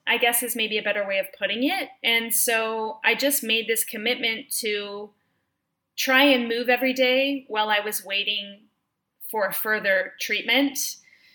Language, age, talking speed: English, 20-39, 160 wpm